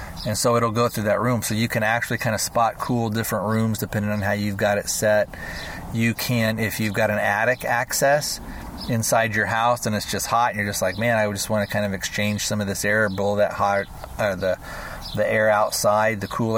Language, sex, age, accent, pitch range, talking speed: English, male, 40-59, American, 100-110 Hz, 235 wpm